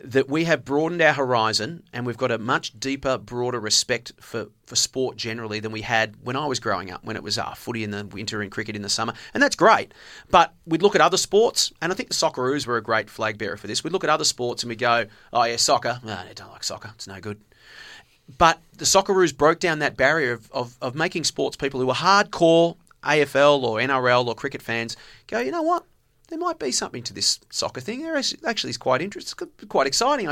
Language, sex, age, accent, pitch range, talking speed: English, male, 30-49, Australian, 120-170 Hz, 240 wpm